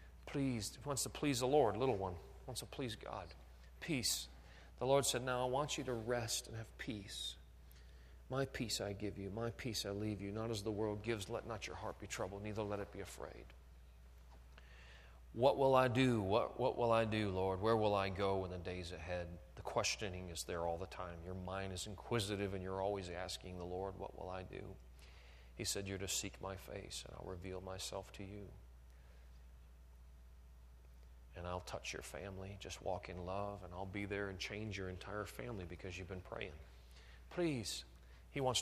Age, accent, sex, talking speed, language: 40-59, American, male, 200 wpm, English